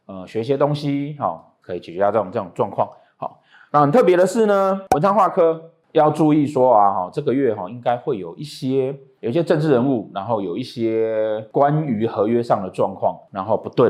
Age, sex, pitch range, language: 30-49, male, 110-145 Hz, Chinese